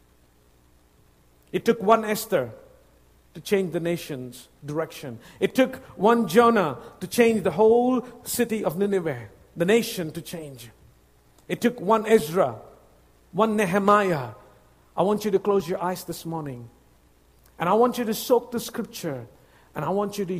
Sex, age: male, 50-69